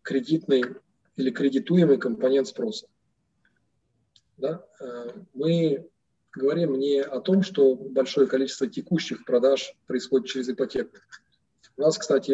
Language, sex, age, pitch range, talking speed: Russian, male, 20-39, 130-160 Hz, 105 wpm